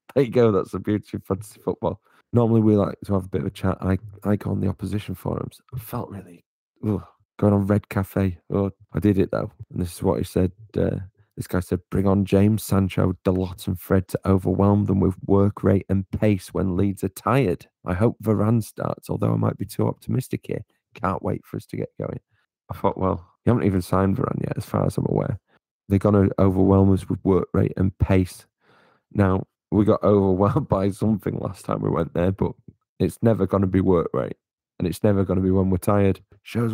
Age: 30-49